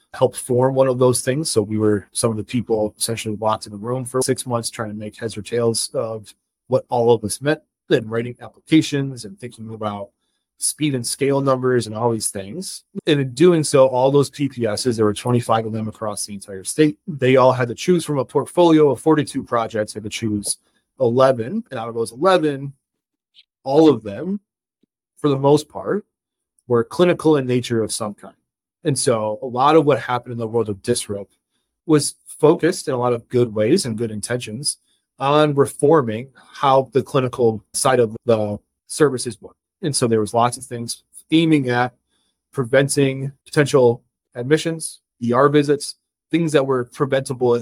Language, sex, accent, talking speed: English, male, American, 190 wpm